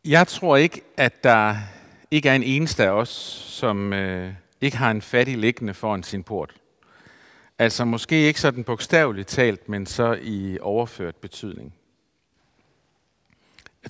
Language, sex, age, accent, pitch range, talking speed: Danish, male, 50-69, native, 110-145 Hz, 140 wpm